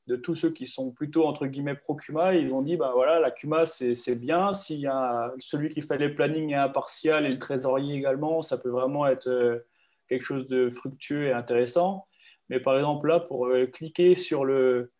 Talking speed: 205 wpm